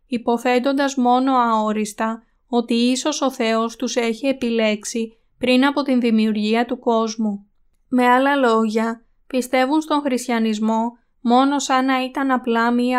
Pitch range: 225-255 Hz